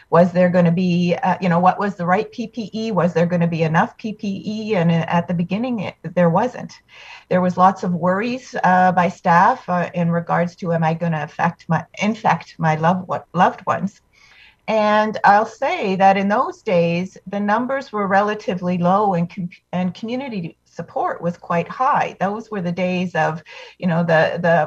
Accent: American